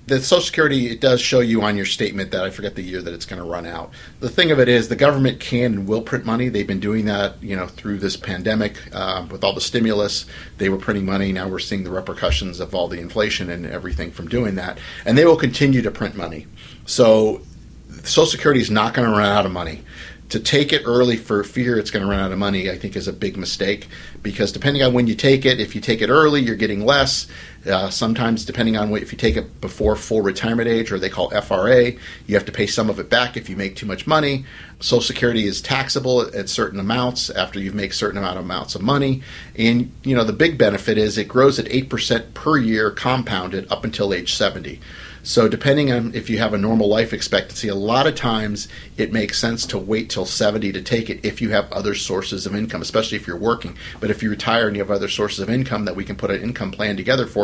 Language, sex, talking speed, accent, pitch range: English, male, 250 wpm, American, 100-125 Hz